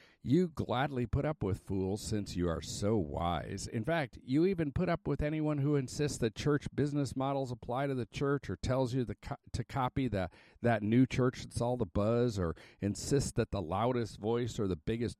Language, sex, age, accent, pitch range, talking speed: English, male, 50-69, American, 95-130 Hz, 195 wpm